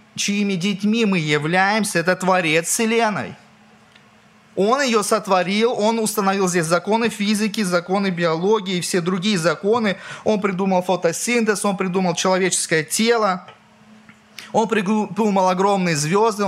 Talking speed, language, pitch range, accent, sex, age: 115 wpm, Russian, 160-210 Hz, native, male, 20-39